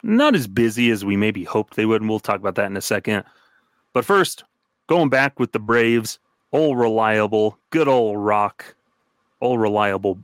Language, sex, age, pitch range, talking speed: English, male, 30-49, 105-125 Hz, 180 wpm